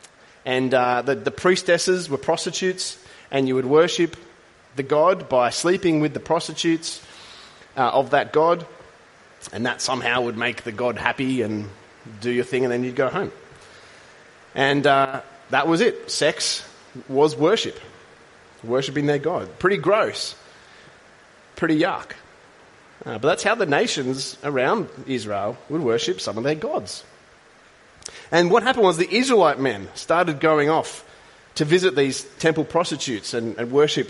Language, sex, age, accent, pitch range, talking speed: English, male, 30-49, Australian, 125-160 Hz, 150 wpm